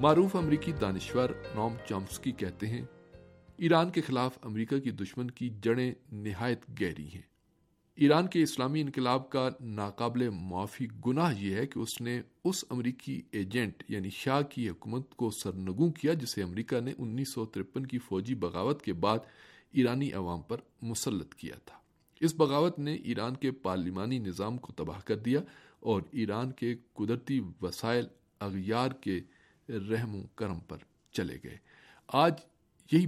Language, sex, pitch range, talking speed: Urdu, male, 105-140 Hz, 150 wpm